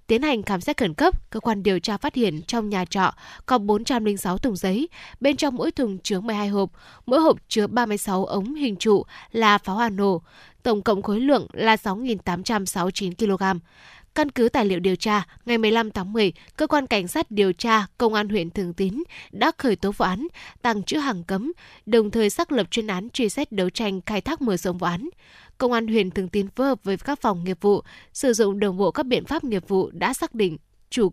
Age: 10-29